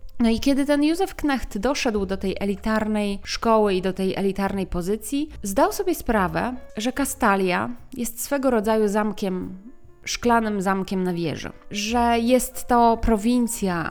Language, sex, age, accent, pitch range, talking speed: Polish, female, 20-39, native, 190-235 Hz, 140 wpm